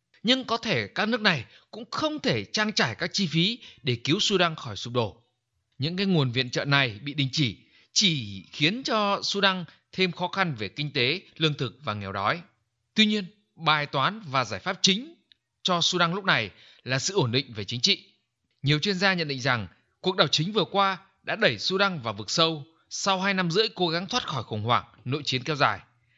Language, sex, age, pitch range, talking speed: Vietnamese, male, 20-39, 125-190 Hz, 215 wpm